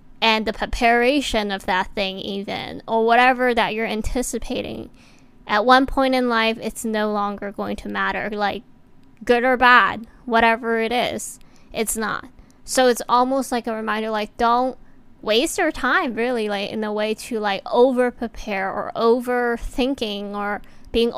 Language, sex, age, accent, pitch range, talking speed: English, female, 10-29, American, 210-245 Hz, 160 wpm